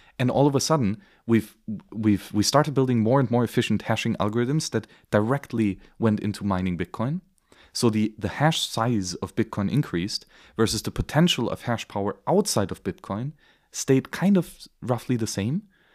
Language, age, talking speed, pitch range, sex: English, 30-49, 175 wpm, 100-125 Hz, male